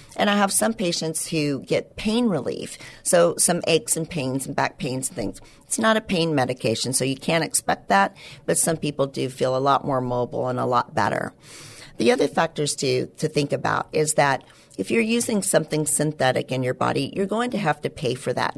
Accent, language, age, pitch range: American, English, 50-69, 130-170 Hz